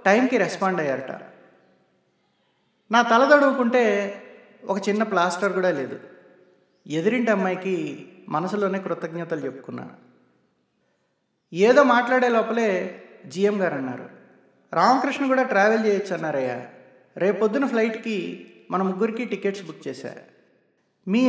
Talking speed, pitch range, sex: 100 wpm, 170-225 Hz, male